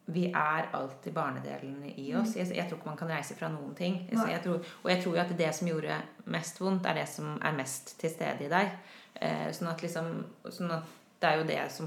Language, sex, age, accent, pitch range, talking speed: Danish, female, 30-49, Swedish, 165-210 Hz, 235 wpm